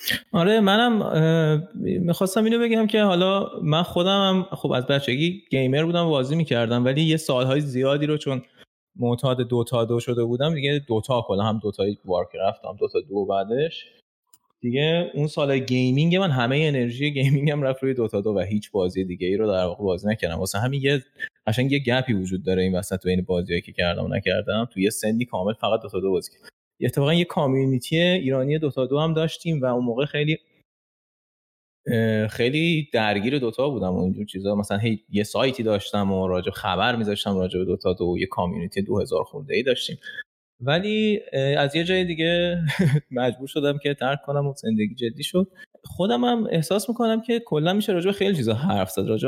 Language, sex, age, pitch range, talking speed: Persian, male, 20-39, 110-165 Hz, 180 wpm